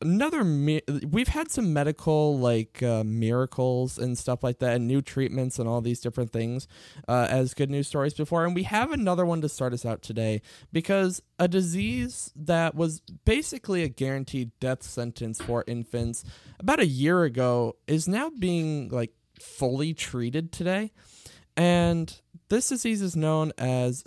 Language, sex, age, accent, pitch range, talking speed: English, male, 20-39, American, 125-175 Hz, 165 wpm